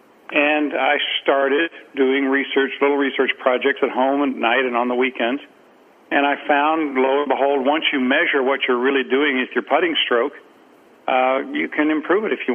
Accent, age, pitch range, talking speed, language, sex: American, 60-79, 130-145 Hz, 190 wpm, English, male